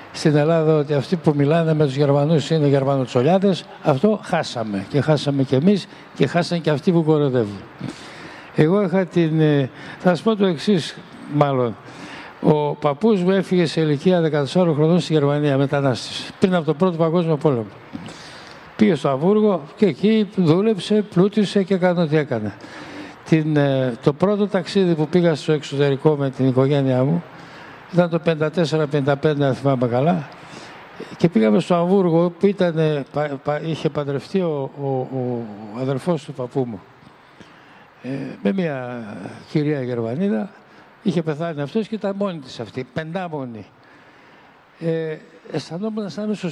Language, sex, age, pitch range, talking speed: Greek, male, 60-79, 140-180 Hz, 145 wpm